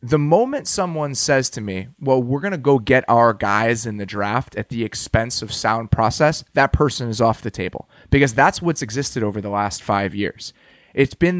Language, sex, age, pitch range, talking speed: English, male, 30-49, 110-145 Hz, 210 wpm